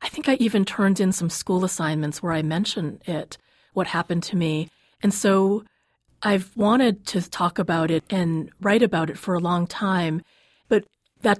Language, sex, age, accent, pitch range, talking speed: English, female, 30-49, American, 170-195 Hz, 185 wpm